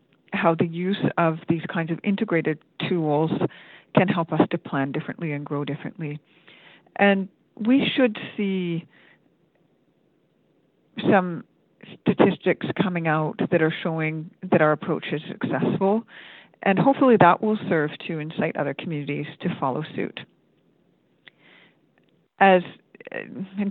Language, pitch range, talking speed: English, 165-205 Hz, 120 wpm